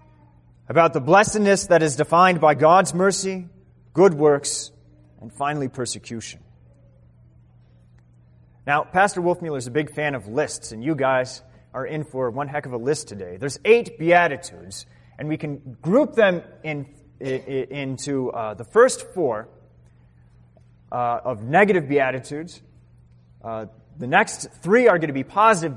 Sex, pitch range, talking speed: male, 110-180 Hz, 145 wpm